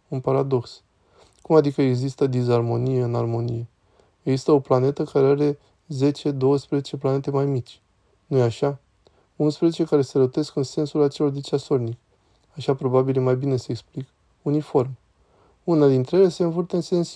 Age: 20-39